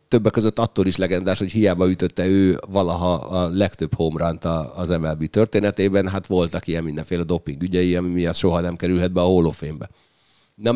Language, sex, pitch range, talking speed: Hungarian, male, 80-95 Hz, 180 wpm